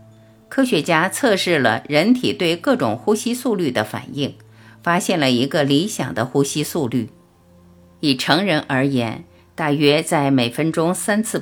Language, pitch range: Chinese, 130-220 Hz